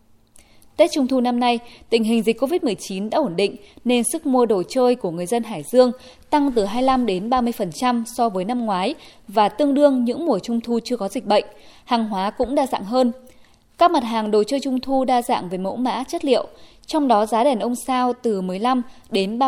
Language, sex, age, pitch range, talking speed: Vietnamese, female, 20-39, 205-270 Hz, 220 wpm